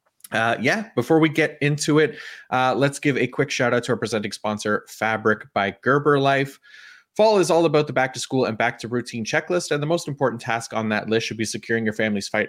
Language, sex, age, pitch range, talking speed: English, male, 30-49, 110-150 Hz, 230 wpm